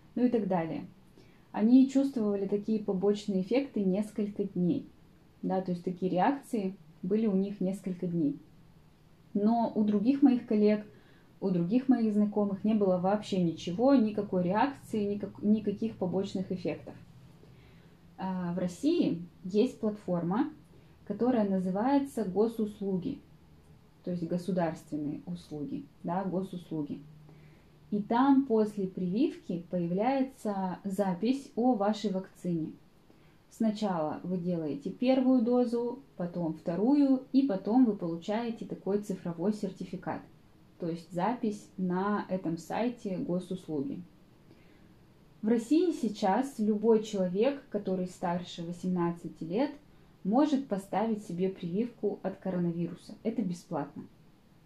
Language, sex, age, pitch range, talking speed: Russian, female, 20-39, 180-225 Hz, 110 wpm